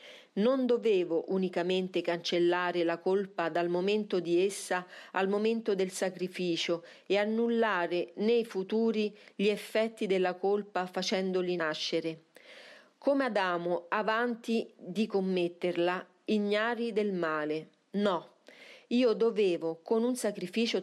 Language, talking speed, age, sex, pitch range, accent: Italian, 110 wpm, 40-59, female, 180-225 Hz, native